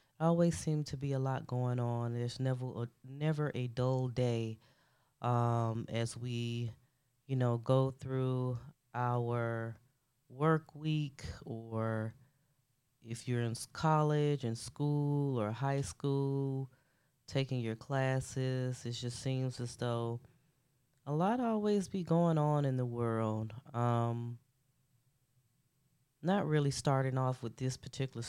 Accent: American